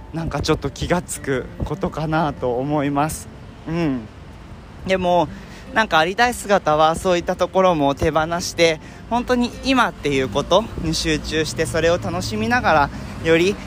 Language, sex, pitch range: Japanese, male, 135-195 Hz